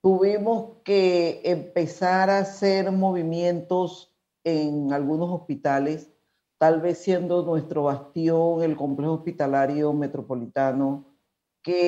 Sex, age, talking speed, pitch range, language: female, 50-69, 95 wpm, 155-180 Hz, Spanish